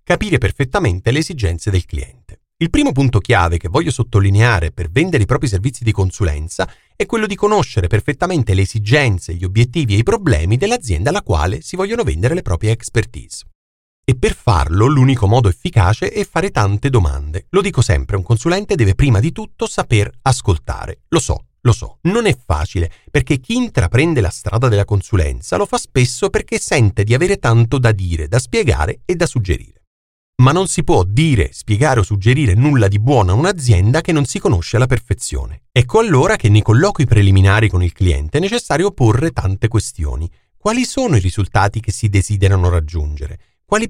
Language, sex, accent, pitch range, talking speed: Italian, male, native, 95-150 Hz, 180 wpm